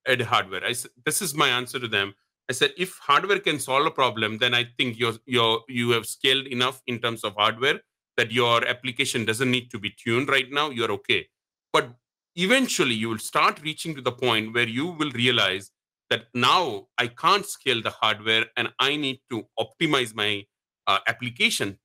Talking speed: 195 wpm